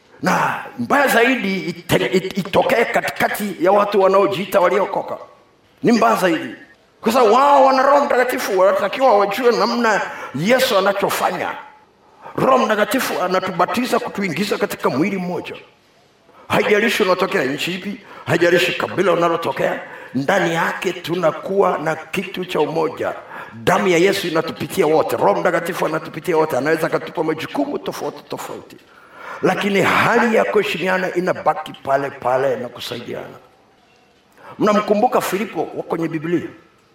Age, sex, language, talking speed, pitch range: 50-69, male, Swahili, 115 wpm, 160-210 Hz